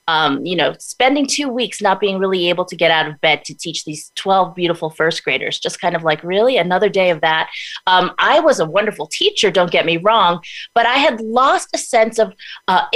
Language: English